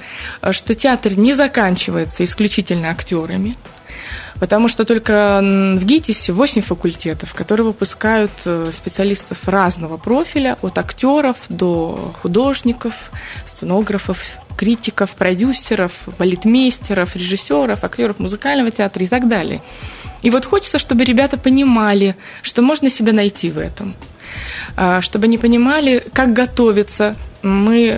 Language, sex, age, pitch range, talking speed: Russian, female, 20-39, 190-245 Hz, 110 wpm